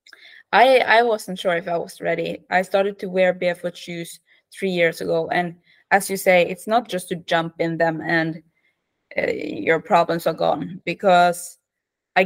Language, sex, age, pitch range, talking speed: English, female, 20-39, 170-200 Hz, 175 wpm